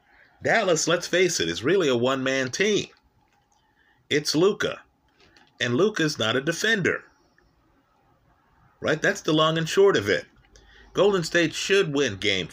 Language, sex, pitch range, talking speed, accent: English, male, 135-165 Hz, 140 wpm, American